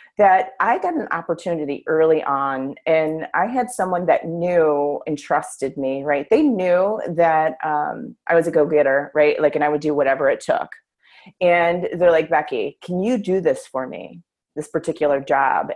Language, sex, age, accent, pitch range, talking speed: English, female, 30-49, American, 150-210 Hz, 180 wpm